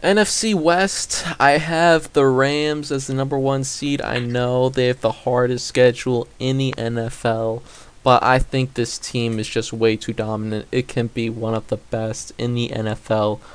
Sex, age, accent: male, 20-39, American